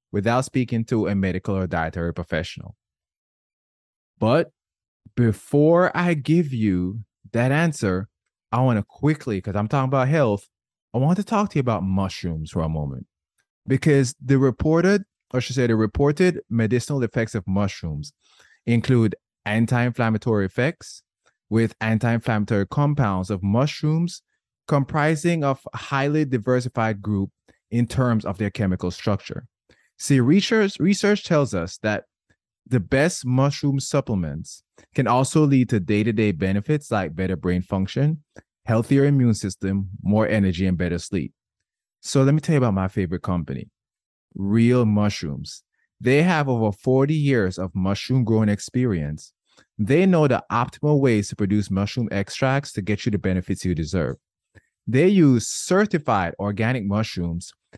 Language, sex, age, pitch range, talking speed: English, male, 20-39, 100-140 Hz, 140 wpm